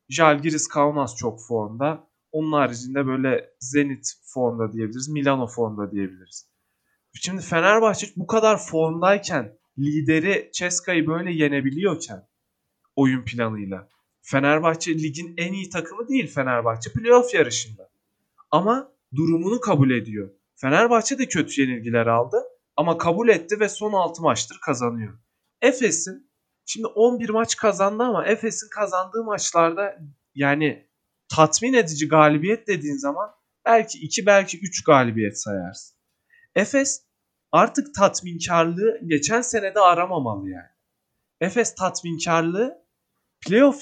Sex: male